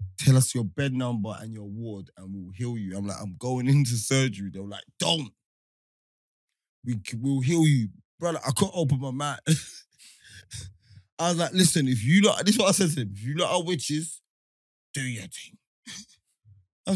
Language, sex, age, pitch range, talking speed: English, male, 20-39, 110-180 Hz, 190 wpm